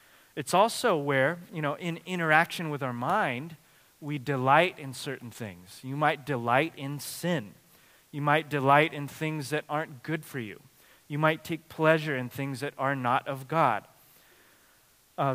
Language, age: English, 30-49